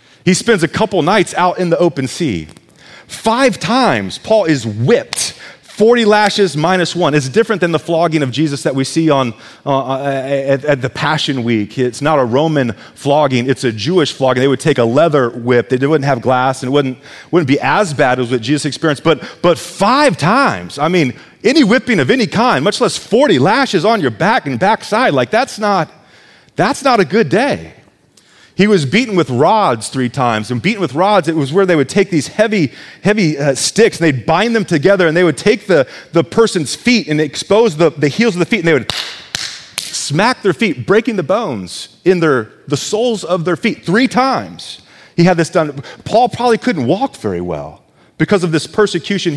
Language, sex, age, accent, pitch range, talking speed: English, male, 30-49, American, 140-205 Hz, 205 wpm